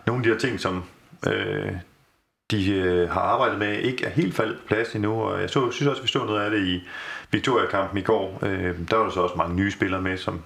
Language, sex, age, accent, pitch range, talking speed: Danish, male, 30-49, native, 95-110 Hz, 250 wpm